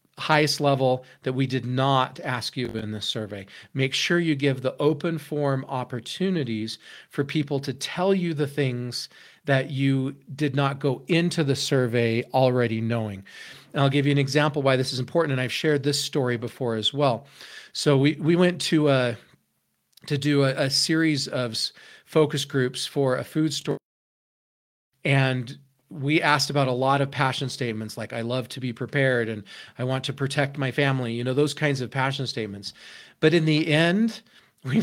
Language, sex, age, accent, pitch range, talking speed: English, male, 40-59, American, 125-150 Hz, 185 wpm